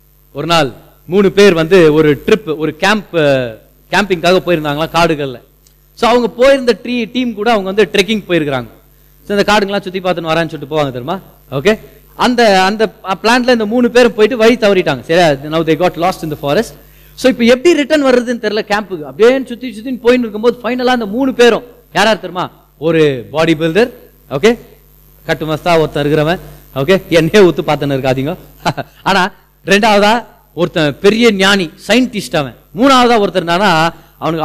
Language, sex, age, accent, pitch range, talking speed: Tamil, male, 30-49, native, 160-240 Hz, 130 wpm